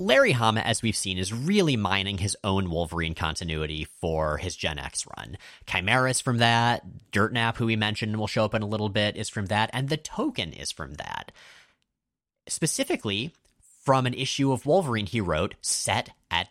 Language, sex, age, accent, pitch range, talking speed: English, male, 30-49, American, 85-125 Hz, 190 wpm